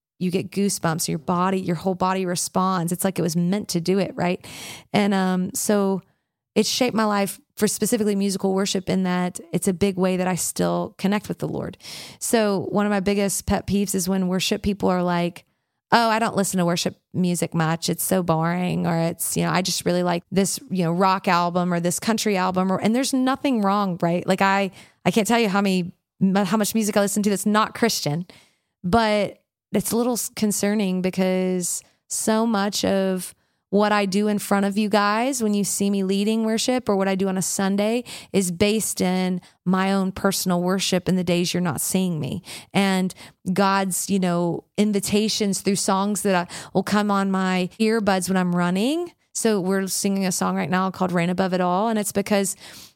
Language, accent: English, American